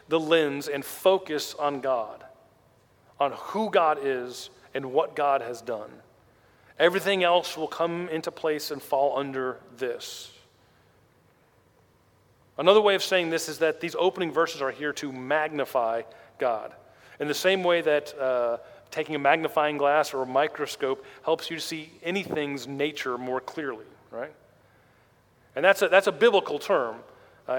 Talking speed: 150 wpm